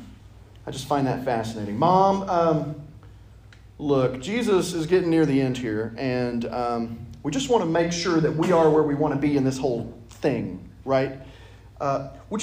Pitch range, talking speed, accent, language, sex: 110-155 Hz, 185 wpm, American, English, male